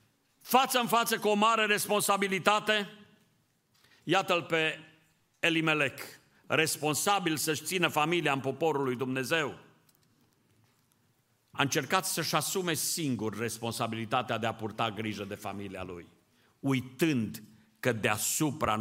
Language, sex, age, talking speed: Romanian, male, 50-69, 110 wpm